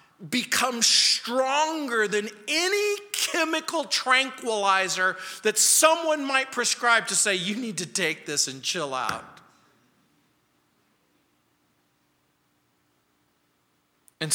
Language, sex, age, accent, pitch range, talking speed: English, male, 50-69, American, 160-245 Hz, 90 wpm